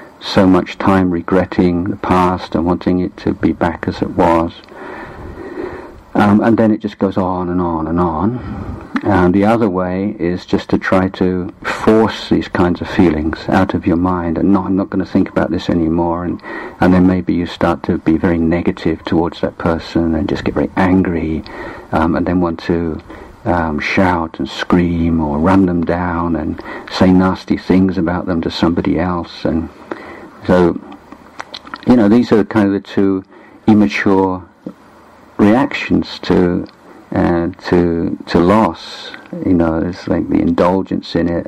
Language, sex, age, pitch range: Thai, male, 50-69, 85-100 Hz